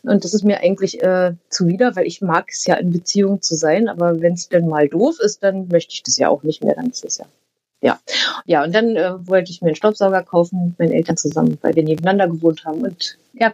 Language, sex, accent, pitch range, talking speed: German, female, German, 175-250 Hz, 250 wpm